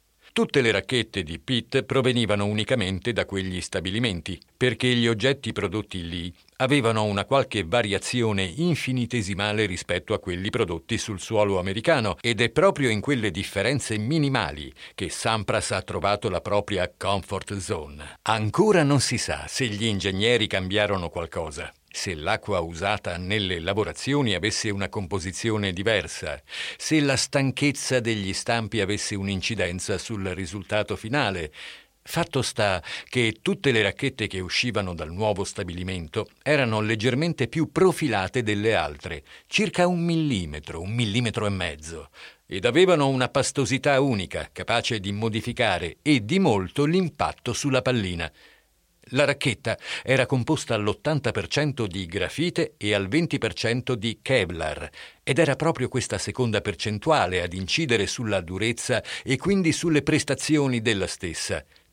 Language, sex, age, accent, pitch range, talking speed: Italian, male, 50-69, native, 100-130 Hz, 130 wpm